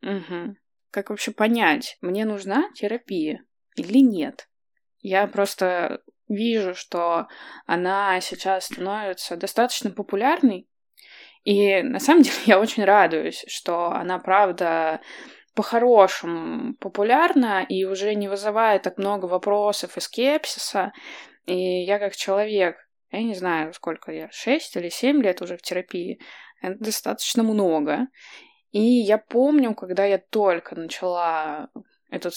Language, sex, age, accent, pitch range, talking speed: Russian, female, 20-39, native, 180-235 Hz, 125 wpm